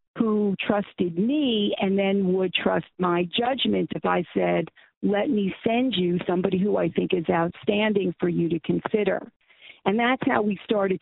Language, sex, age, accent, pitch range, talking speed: English, female, 50-69, American, 185-235 Hz, 170 wpm